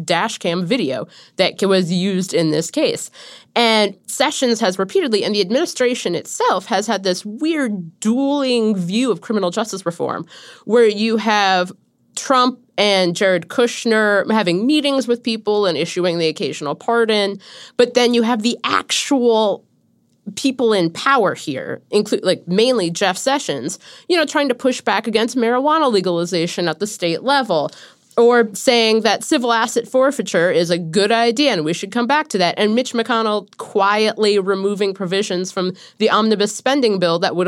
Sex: female